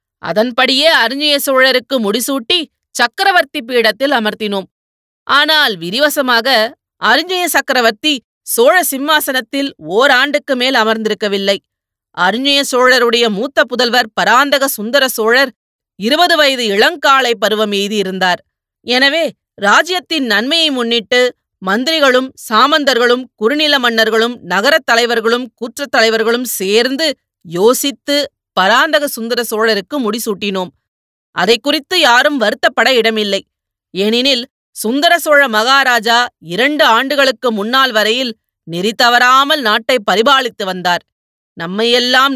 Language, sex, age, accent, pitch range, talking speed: Tamil, female, 30-49, native, 205-275 Hz, 90 wpm